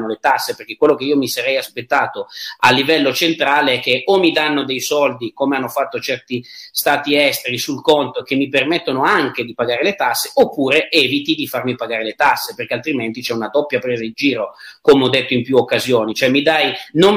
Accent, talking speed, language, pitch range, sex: native, 205 wpm, Italian, 125-170 Hz, male